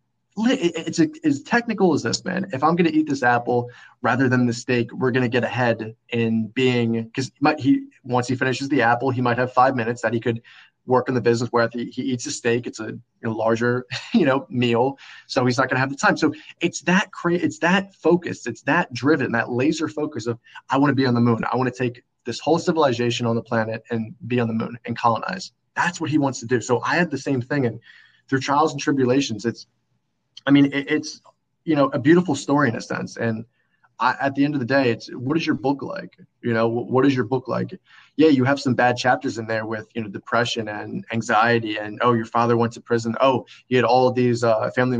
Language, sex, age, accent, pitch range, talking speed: English, male, 20-39, American, 115-140 Hz, 245 wpm